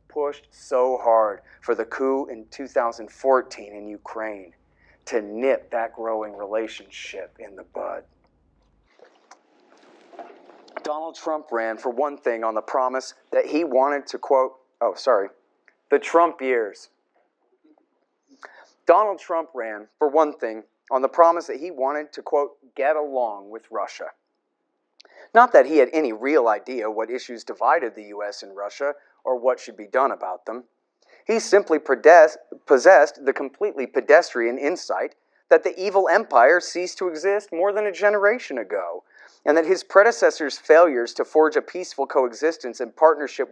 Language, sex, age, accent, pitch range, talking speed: English, male, 40-59, American, 115-175 Hz, 150 wpm